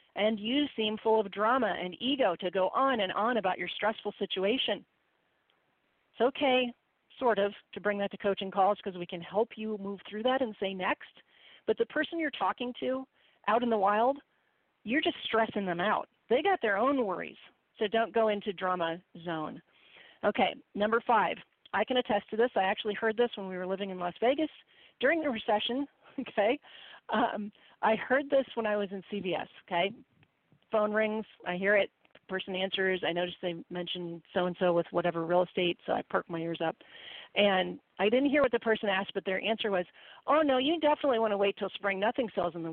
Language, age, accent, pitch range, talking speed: English, 40-59, American, 190-245 Hz, 200 wpm